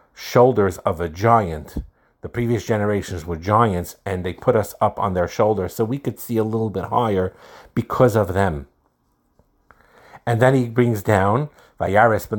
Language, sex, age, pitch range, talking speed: English, male, 50-69, 90-115 Hz, 170 wpm